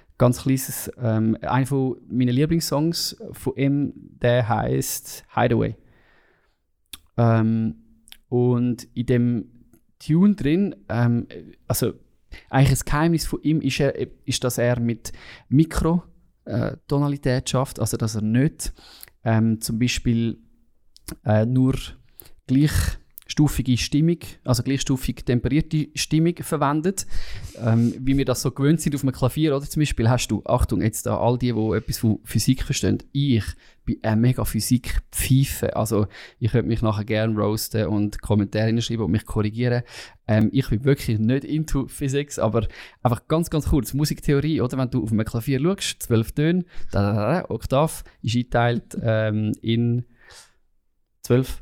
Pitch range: 110-140 Hz